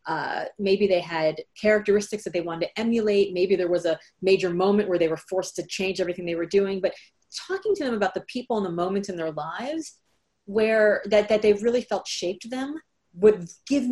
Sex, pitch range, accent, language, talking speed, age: female, 180-220 Hz, American, English, 210 wpm, 30-49